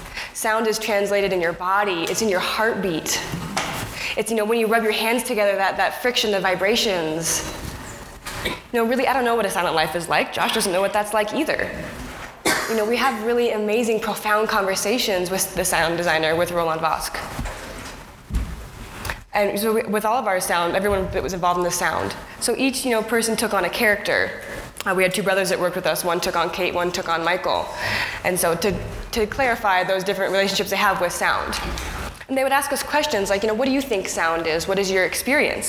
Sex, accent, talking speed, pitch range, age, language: female, American, 220 wpm, 185-230 Hz, 10-29, English